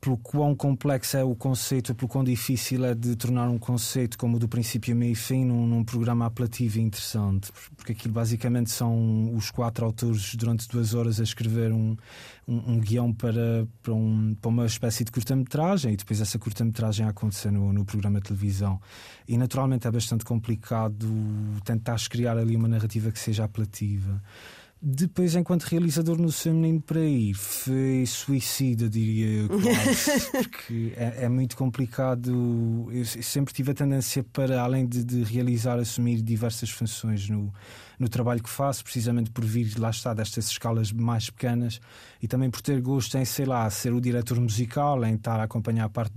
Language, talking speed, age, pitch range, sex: Portuguese, 180 wpm, 20-39, 110-125 Hz, male